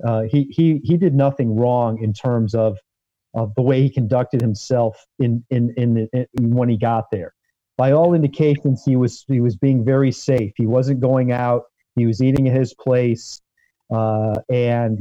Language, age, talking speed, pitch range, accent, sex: English, 40-59, 190 wpm, 115-140 Hz, American, male